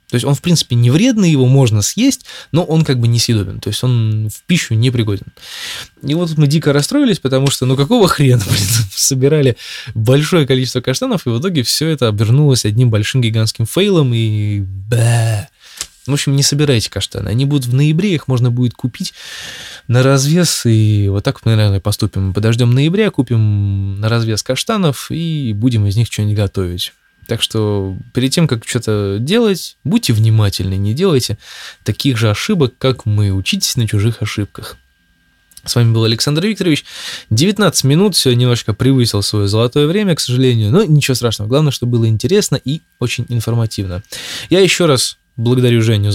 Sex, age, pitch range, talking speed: male, 20-39, 110-145 Hz, 175 wpm